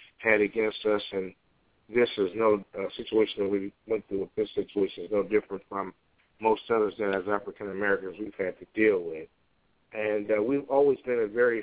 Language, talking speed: English, 190 wpm